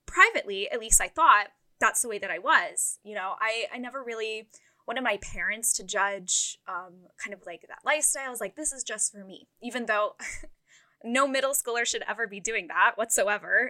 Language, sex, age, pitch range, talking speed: English, female, 10-29, 210-270 Hz, 205 wpm